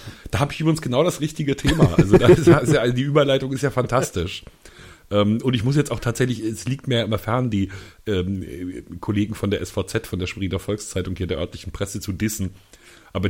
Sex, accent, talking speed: male, German, 205 wpm